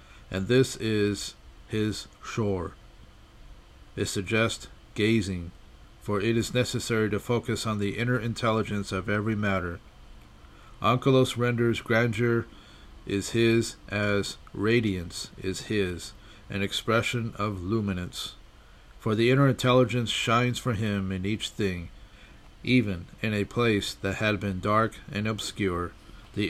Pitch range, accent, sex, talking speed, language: 100-115 Hz, American, male, 125 wpm, English